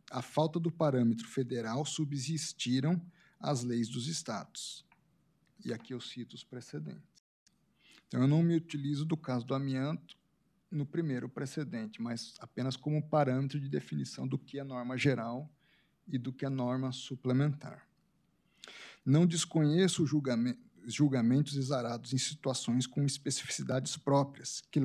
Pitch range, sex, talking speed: 125-155 Hz, male, 135 wpm